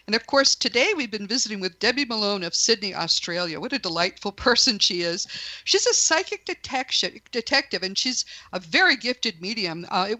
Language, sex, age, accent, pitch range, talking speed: English, female, 50-69, American, 180-250 Hz, 180 wpm